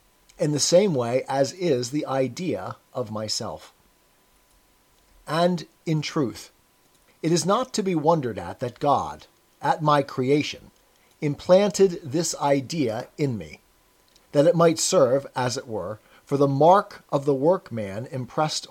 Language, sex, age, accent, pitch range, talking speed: English, male, 40-59, American, 135-175 Hz, 140 wpm